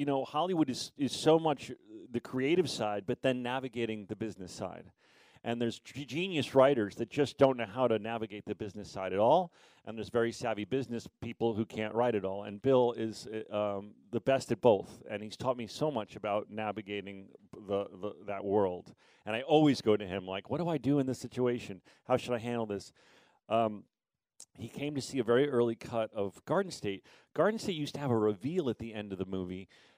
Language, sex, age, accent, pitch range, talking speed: English, male, 40-59, American, 105-140 Hz, 215 wpm